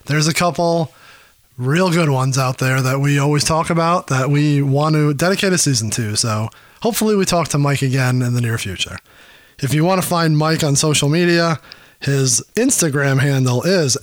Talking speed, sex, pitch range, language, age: 195 wpm, male, 130-165 Hz, English, 30-49